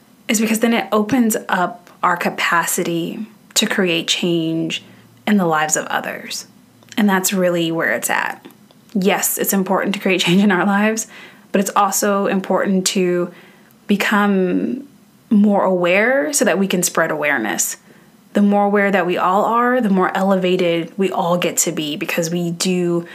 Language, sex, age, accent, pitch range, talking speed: English, female, 20-39, American, 175-210 Hz, 165 wpm